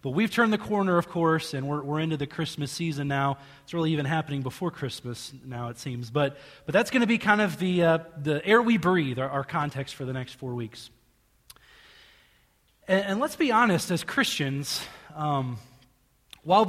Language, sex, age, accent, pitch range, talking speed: English, male, 20-39, American, 145-210 Hz, 200 wpm